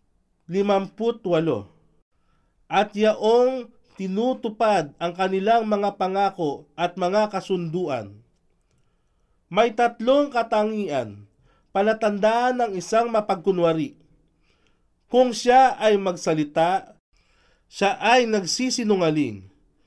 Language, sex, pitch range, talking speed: Filipino, male, 170-220 Hz, 80 wpm